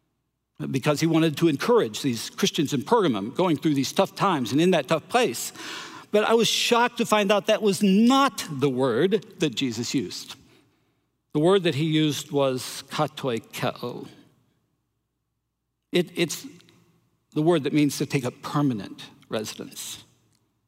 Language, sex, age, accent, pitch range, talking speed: English, male, 60-79, American, 135-195 Hz, 155 wpm